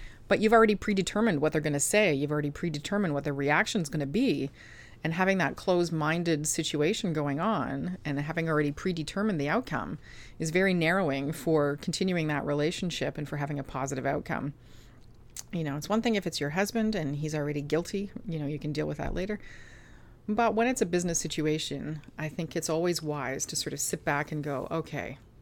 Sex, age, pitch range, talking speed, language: female, 30-49, 140-180 Hz, 200 wpm, English